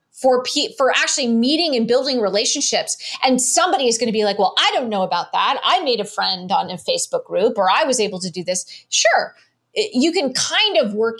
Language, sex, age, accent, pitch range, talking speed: English, female, 30-49, American, 180-225 Hz, 230 wpm